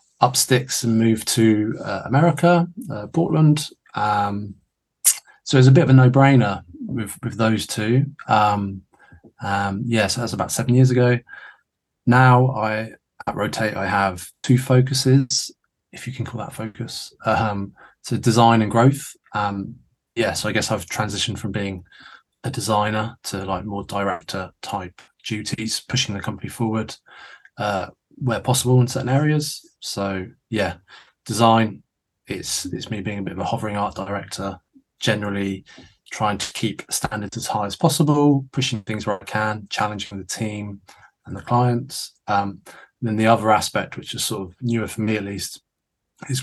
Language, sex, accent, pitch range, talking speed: English, male, British, 100-125 Hz, 165 wpm